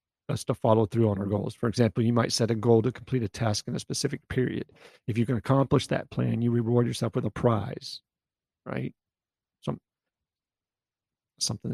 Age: 40-59